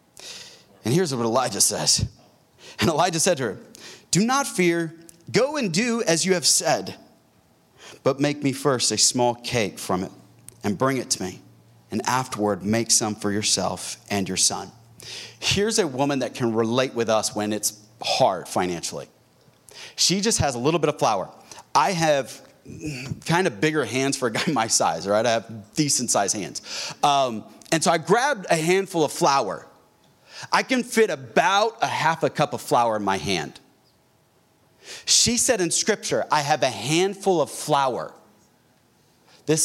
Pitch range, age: 120-195 Hz, 30-49